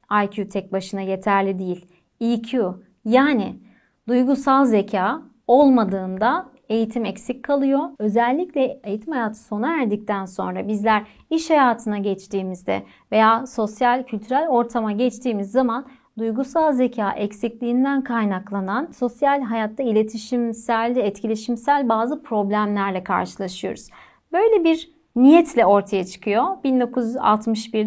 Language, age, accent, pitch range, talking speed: Turkish, 40-59, native, 210-270 Hz, 95 wpm